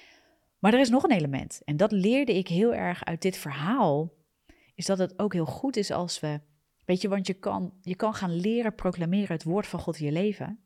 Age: 40-59